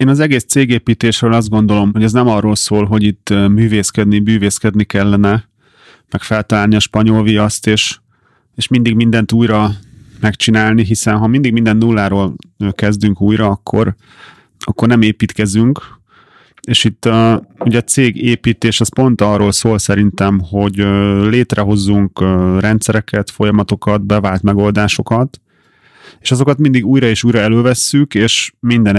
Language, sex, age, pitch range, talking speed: Hungarian, male, 30-49, 105-115 Hz, 130 wpm